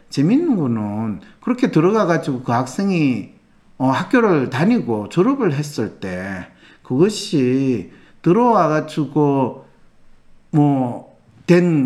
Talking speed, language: 80 wpm, English